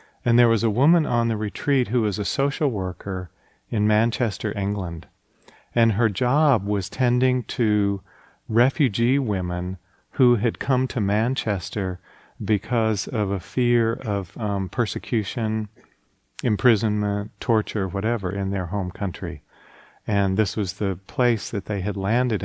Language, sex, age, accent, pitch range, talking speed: English, male, 40-59, American, 95-115 Hz, 140 wpm